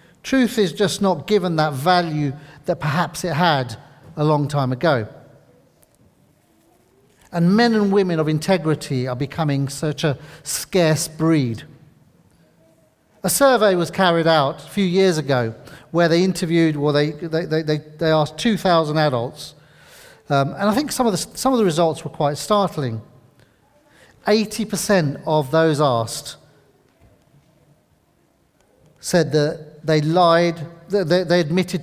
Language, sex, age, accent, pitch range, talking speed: English, male, 40-59, British, 145-185 Hz, 135 wpm